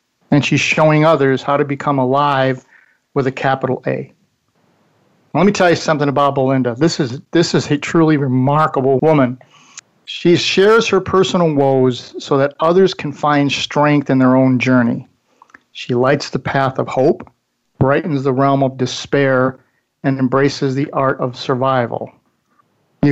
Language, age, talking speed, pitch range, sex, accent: English, 50-69, 155 wpm, 130-155 Hz, male, American